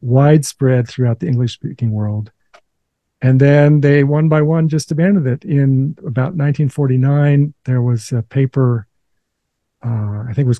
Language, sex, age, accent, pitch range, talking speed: English, male, 50-69, American, 125-155 Hz, 145 wpm